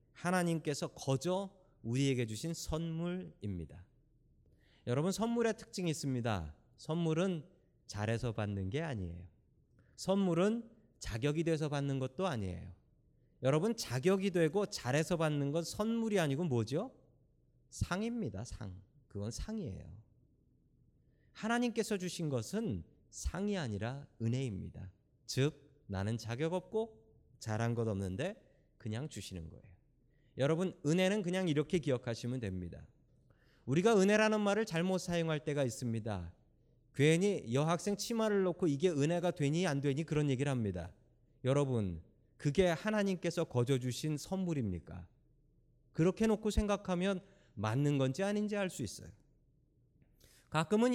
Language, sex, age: Korean, male, 30-49